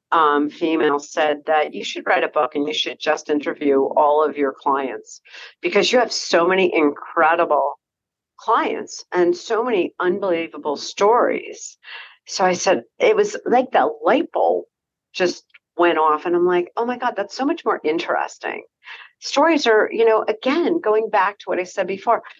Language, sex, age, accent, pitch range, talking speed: English, female, 50-69, American, 165-245 Hz, 175 wpm